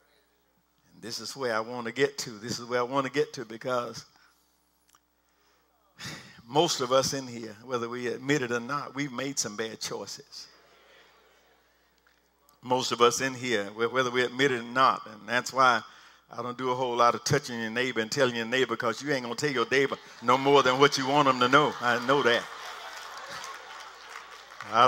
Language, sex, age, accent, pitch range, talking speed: English, male, 50-69, American, 120-150 Hz, 200 wpm